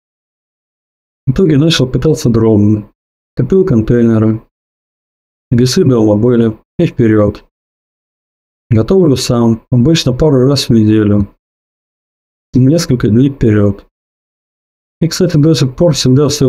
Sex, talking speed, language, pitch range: male, 105 wpm, Russian, 110-135 Hz